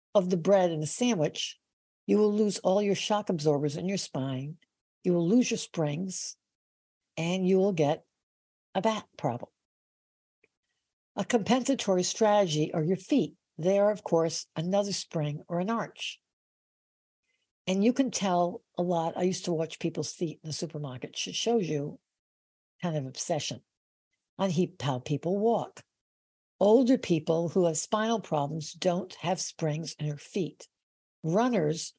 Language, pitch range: English, 155-200 Hz